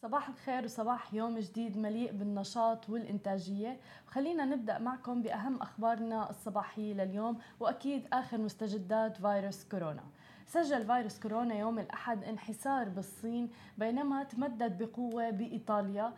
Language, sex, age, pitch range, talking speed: Arabic, female, 20-39, 210-255 Hz, 115 wpm